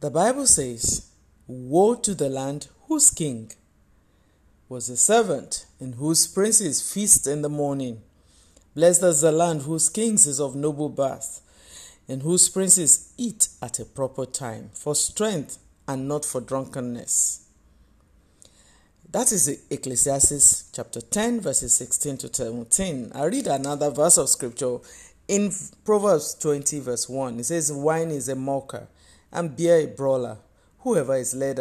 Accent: Nigerian